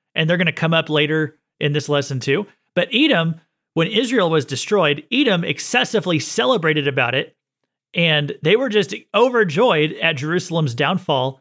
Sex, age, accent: male, 40-59, American